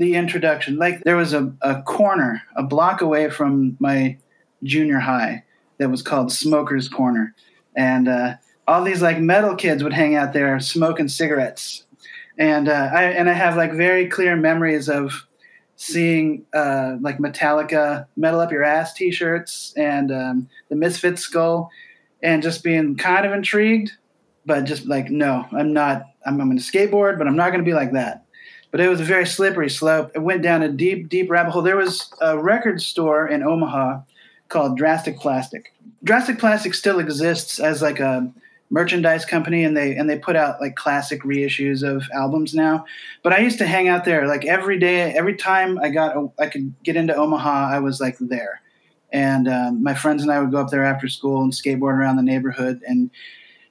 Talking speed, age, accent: 190 wpm, 30-49, American